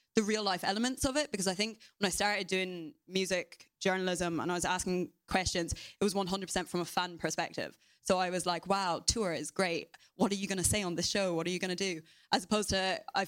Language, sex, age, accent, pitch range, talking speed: English, female, 20-39, British, 170-195 Hz, 245 wpm